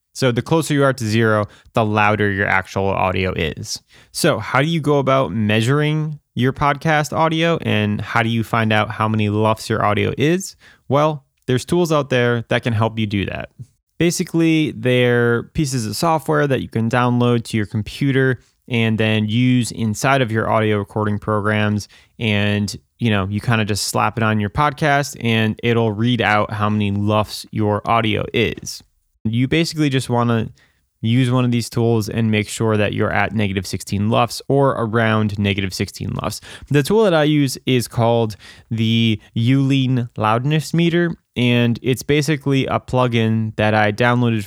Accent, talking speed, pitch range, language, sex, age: American, 180 wpm, 105-135 Hz, English, male, 20-39